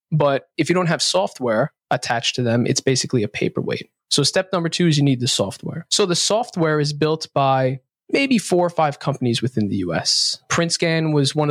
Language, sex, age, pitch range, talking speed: English, male, 20-39, 135-155 Hz, 205 wpm